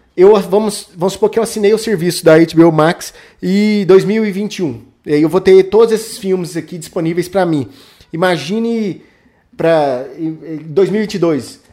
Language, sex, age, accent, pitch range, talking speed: Portuguese, male, 20-39, Brazilian, 160-205 Hz, 140 wpm